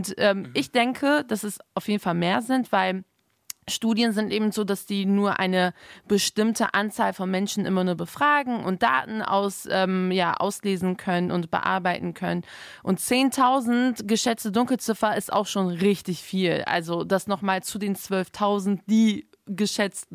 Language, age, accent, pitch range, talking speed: German, 20-39, German, 185-220 Hz, 160 wpm